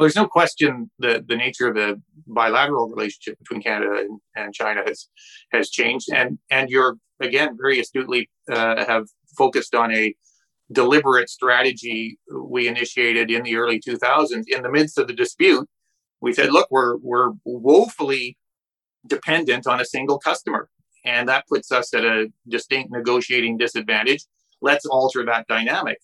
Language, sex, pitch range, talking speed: English, male, 115-155 Hz, 155 wpm